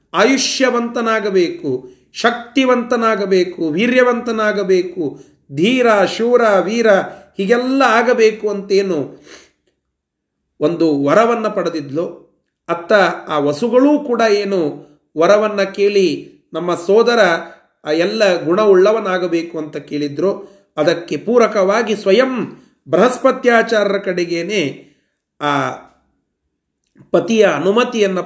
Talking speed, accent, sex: 70 wpm, native, male